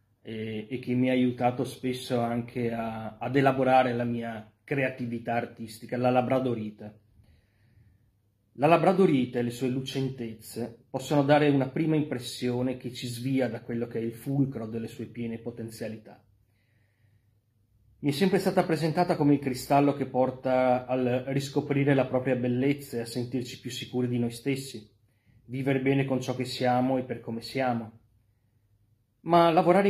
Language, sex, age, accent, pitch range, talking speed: Italian, male, 30-49, native, 115-140 Hz, 150 wpm